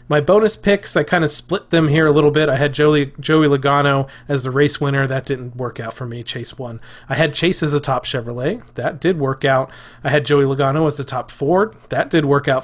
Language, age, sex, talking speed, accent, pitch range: English, 30-49, male, 245 wpm, American, 125-150 Hz